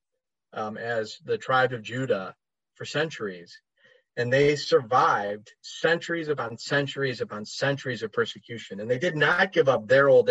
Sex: male